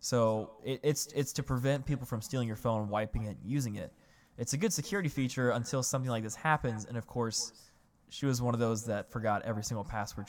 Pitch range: 115-135 Hz